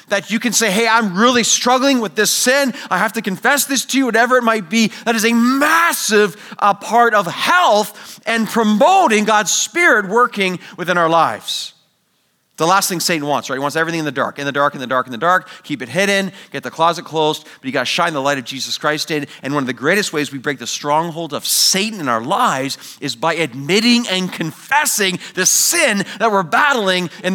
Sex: male